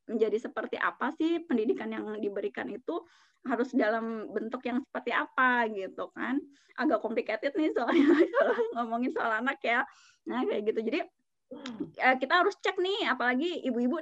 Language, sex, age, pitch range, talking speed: Indonesian, female, 20-39, 225-300 Hz, 150 wpm